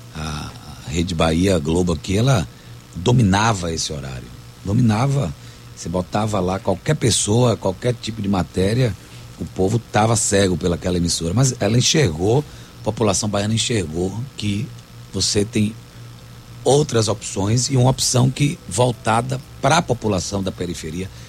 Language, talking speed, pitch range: Portuguese, 130 wpm, 90-135 Hz